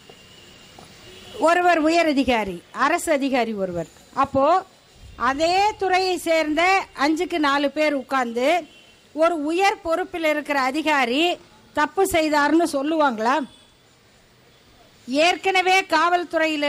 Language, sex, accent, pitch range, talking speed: Tamil, female, native, 285-360 Hz, 85 wpm